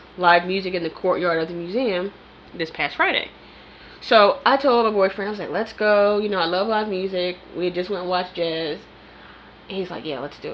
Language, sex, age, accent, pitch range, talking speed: English, female, 10-29, American, 170-225 Hz, 220 wpm